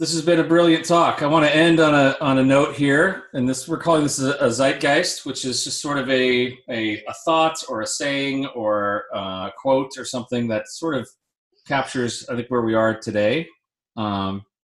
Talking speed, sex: 210 wpm, male